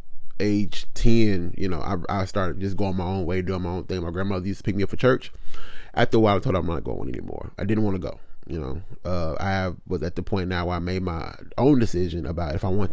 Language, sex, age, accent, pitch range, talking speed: English, male, 30-49, American, 90-105 Hz, 280 wpm